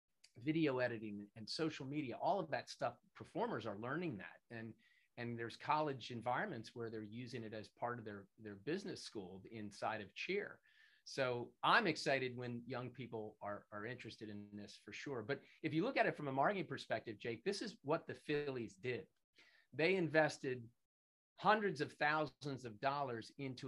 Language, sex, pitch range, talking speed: English, male, 110-145 Hz, 175 wpm